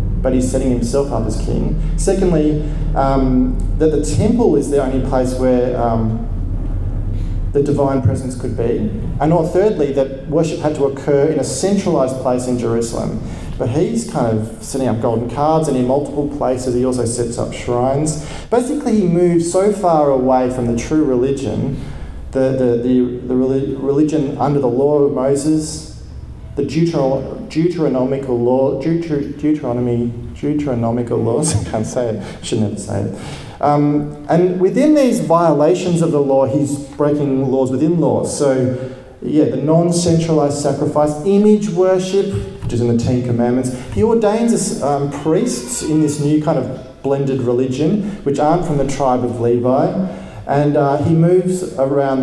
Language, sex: English, male